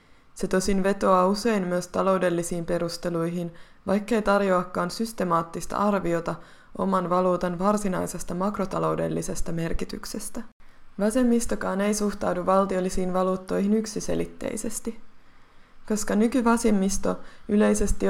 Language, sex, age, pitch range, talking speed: Finnish, female, 20-39, 175-210 Hz, 85 wpm